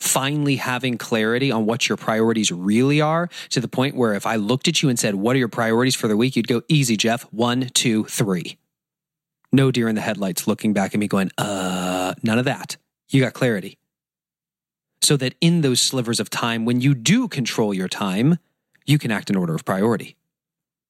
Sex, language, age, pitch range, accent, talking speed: male, English, 30-49, 110-155 Hz, American, 205 wpm